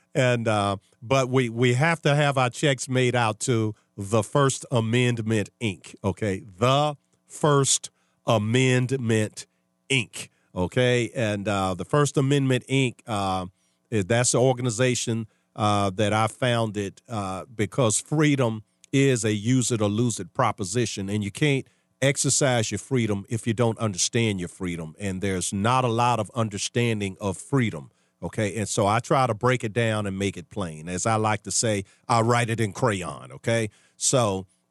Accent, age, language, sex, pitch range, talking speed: American, 50-69, English, male, 100-125 Hz, 155 wpm